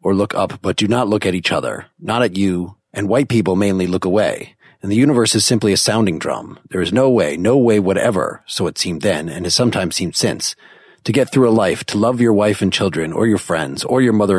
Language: English